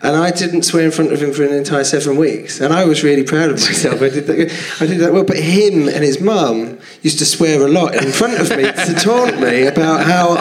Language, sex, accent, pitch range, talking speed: English, male, British, 125-180 Hz, 255 wpm